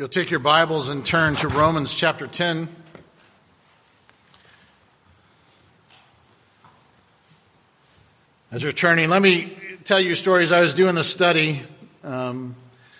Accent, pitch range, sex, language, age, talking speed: American, 150-180 Hz, male, English, 50-69, 120 wpm